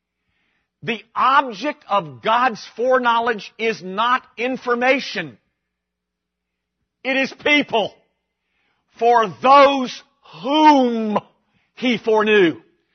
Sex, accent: male, American